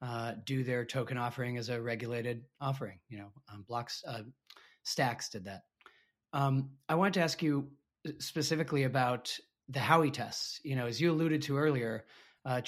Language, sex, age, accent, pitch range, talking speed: English, male, 30-49, American, 125-155 Hz, 170 wpm